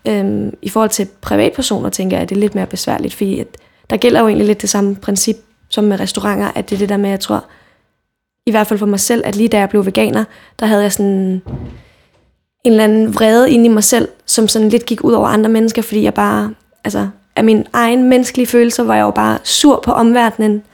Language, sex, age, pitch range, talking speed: Danish, female, 20-39, 200-230 Hz, 230 wpm